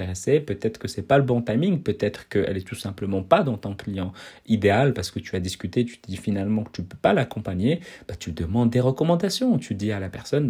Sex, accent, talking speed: male, French, 240 wpm